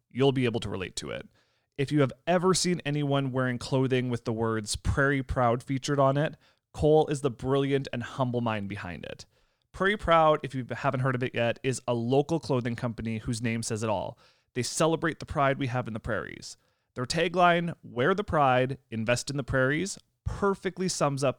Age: 30-49